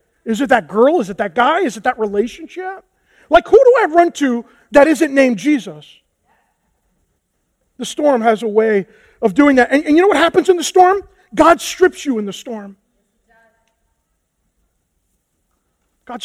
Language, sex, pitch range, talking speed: English, male, 220-290 Hz, 170 wpm